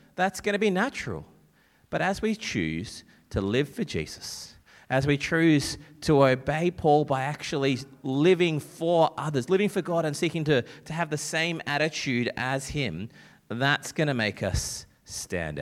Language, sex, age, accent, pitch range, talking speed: English, male, 30-49, Australian, 120-170 Hz, 165 wpm